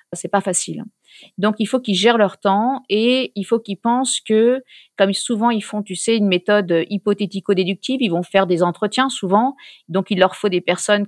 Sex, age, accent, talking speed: female, 40-59, French, 200 wpm